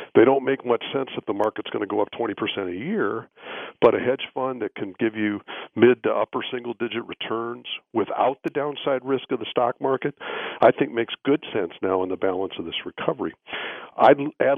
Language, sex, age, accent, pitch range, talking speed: English, male, 50-69, American, 105-130 Hz, 205 wpm